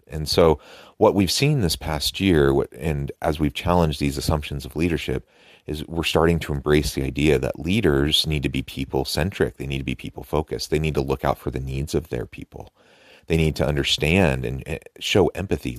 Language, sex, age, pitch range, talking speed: English, male, 30-49, 70-80 Hz, 205 wpm